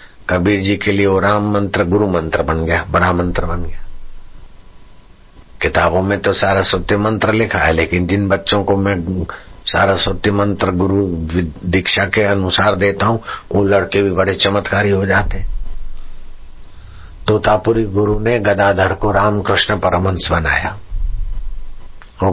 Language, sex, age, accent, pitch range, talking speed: Hindi, male, 60-79, native, 90-100 Hz, 140 wpm